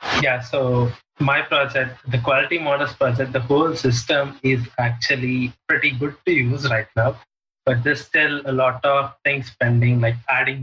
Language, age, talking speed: English, 20-39, 165 wpm